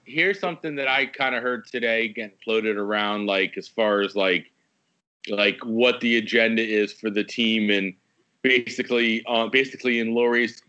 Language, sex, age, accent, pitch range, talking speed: English, male, 30-49, American, 115-130 Hz, 170 wpm